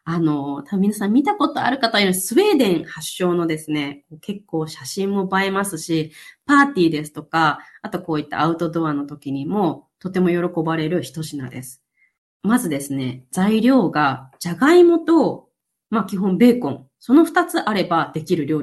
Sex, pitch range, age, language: female, 155-230 Hz, 20-39, Japanese